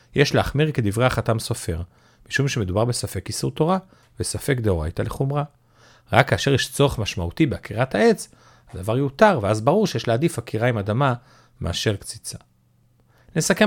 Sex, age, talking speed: male, 40-59, 140 wpm